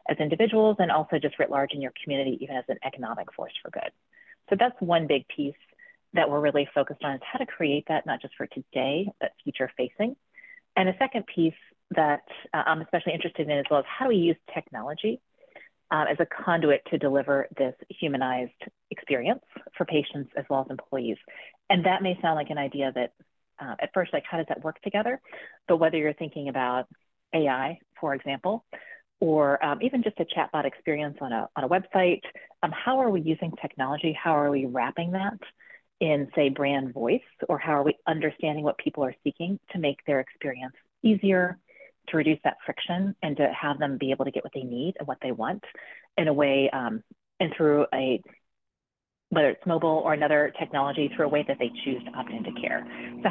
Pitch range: 140-185 Hz